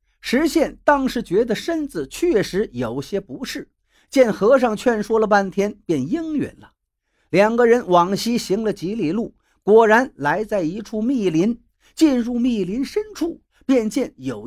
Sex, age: male, 50-69